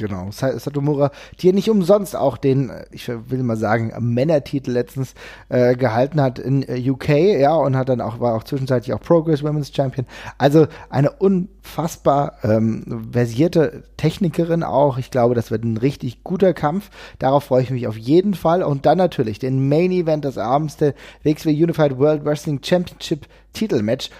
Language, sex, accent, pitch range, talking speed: German, male, German, 125-170 Hz, 165 wpm